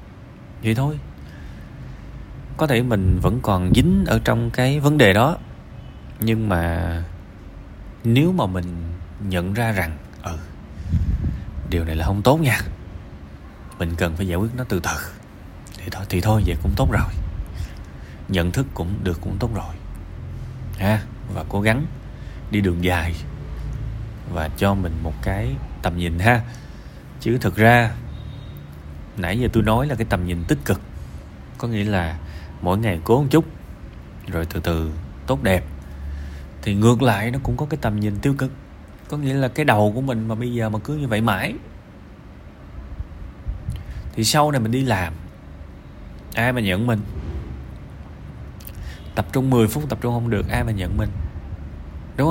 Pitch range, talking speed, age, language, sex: 80-115 Hz, 165 wpm, 20-39, Vietnamese, male